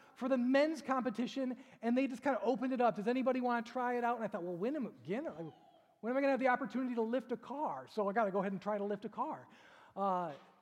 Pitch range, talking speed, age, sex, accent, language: 170-230 Hz, 270 wpm, 30-49, male, American, English